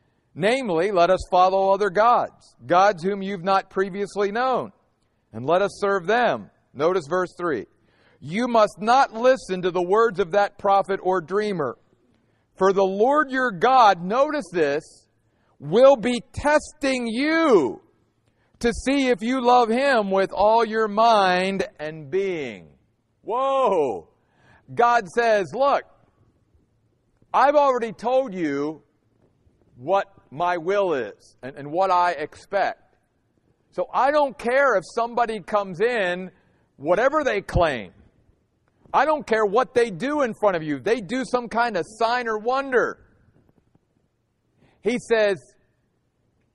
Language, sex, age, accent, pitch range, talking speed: English, male, 50-69, American, 185-245 Hz, 135 wpm